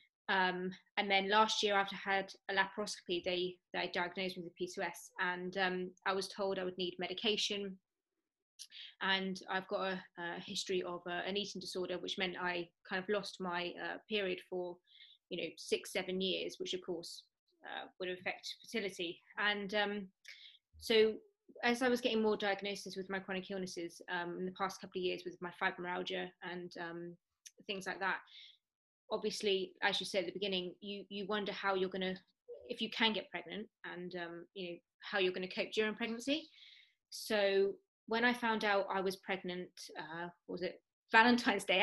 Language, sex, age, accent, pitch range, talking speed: English, female, 20-39, British, 185-215 Hz, 185 wpm